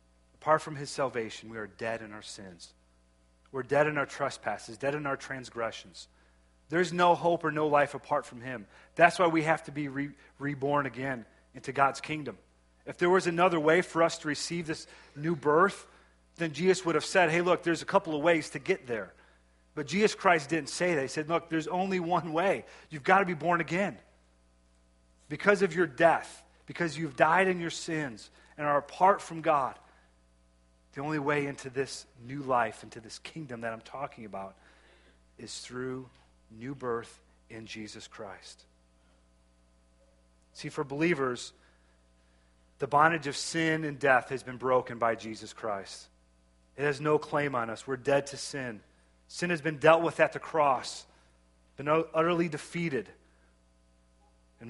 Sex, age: male, 40-59